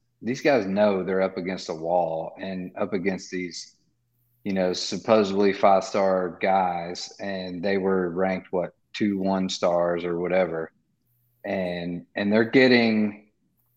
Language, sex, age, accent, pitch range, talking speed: English, male, 40-59, American, 95-115 Hz, 140 wpm